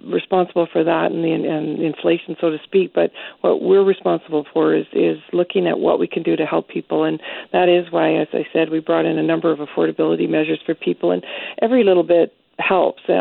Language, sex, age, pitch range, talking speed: English, female, 50-69, 160-185 Hz, 220 wpm